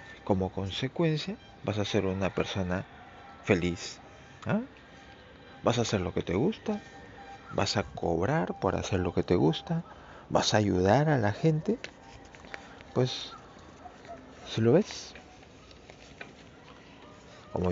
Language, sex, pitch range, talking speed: Spanish, male, 95-130 Hz, 125 wpm